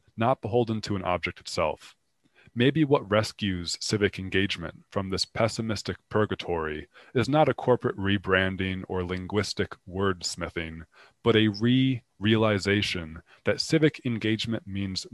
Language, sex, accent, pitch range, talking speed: English, male, American, 95-120 Hz, 120 wpm